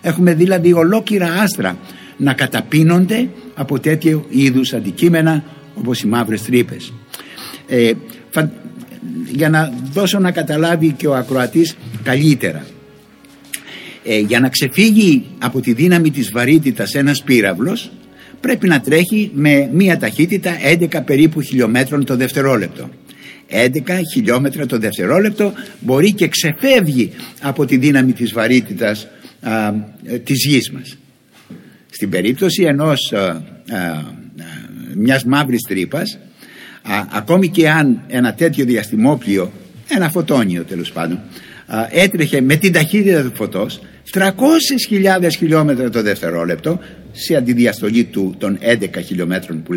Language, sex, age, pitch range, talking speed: Greek, male, 60-79, 120-185 Hz, 115 wpm